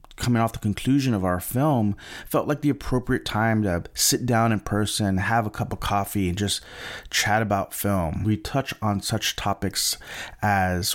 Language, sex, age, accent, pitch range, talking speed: English, male, 30-49, American, 100-130 Hz, 180 wpm